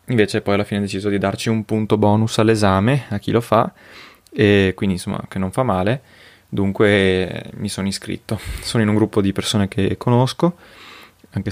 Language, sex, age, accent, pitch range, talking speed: Italian, male, 20-39, native, 100-115 Hz, 190 wpm